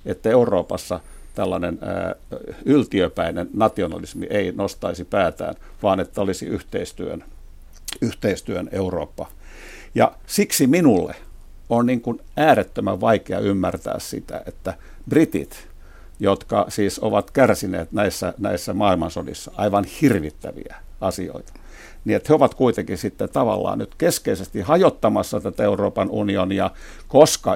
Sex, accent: male, native